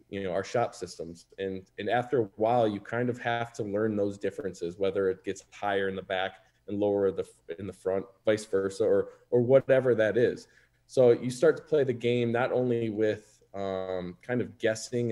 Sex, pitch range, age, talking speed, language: male, 100-120 Hz, 20-39, 205 wpm, English